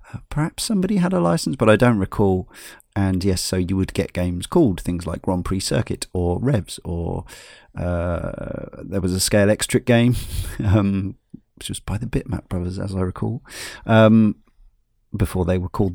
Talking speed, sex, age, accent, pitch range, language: 175 wpm, male, 40-59, British, 95-115 Hz, English